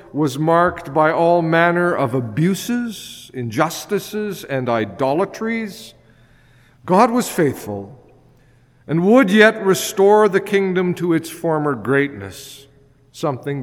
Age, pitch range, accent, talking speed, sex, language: 50-69, 130-185 Hz, American, 105 wpm, male, English